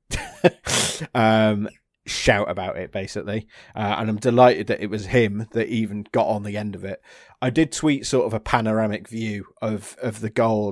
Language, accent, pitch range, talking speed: English, British, 105-125 Hz, 185 wpm